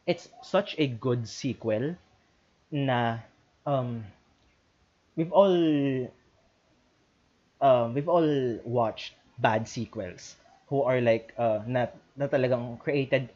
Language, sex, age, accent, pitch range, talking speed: English, male, 20-39, Filipino, 115-145 Hz, 110 wpm